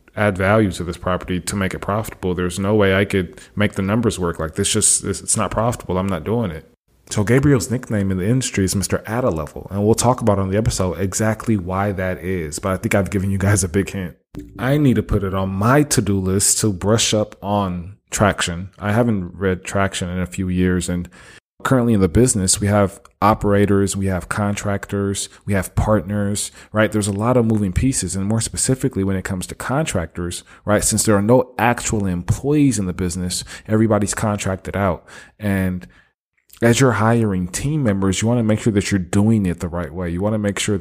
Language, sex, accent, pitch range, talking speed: English, male, American, 95-110 Hz, 215 wpm